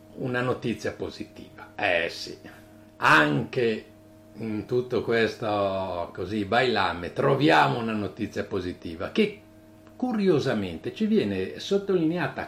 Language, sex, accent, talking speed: Italian, male, native, 95 wpm